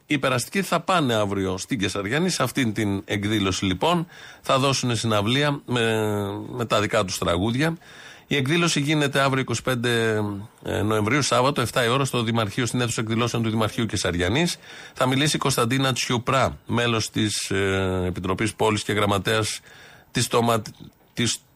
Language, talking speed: Greek, 150 wpm